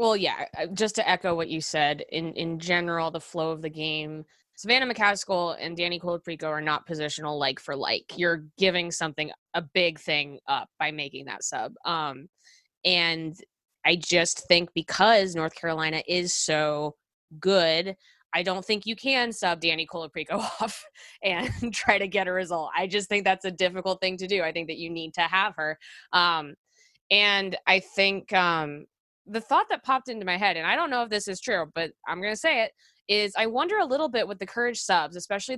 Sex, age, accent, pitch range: female, 20-39, American, 165-210 Hz